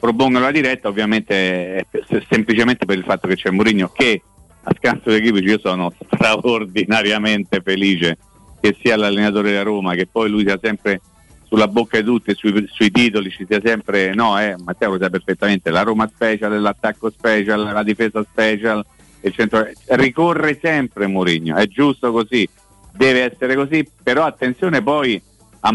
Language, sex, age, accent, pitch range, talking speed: Italian, male, 50-69, native, 100-120 Hz, 165 wpm